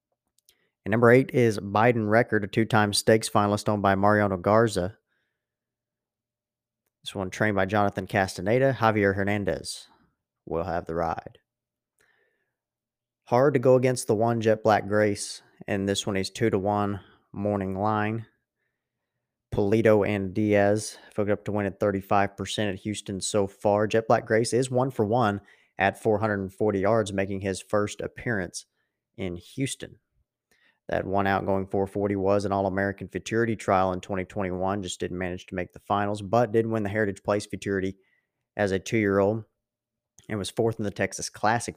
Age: 30-49